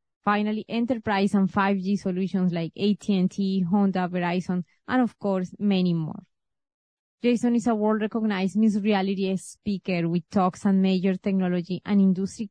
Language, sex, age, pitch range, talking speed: English, female, 20-39, 190-220 Hz, 135 wpm